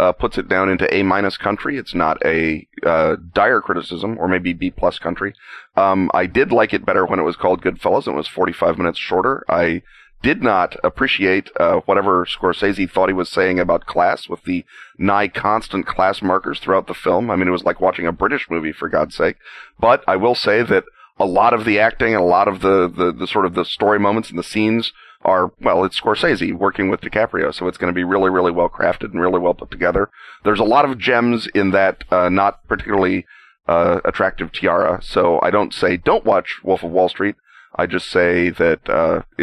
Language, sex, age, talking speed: English, male, 30-49, 220 wpm